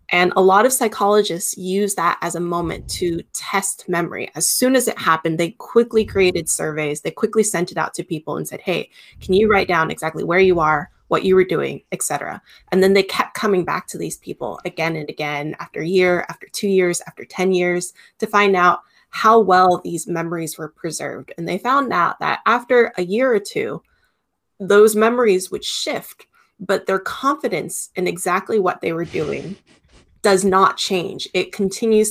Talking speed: 195 wpm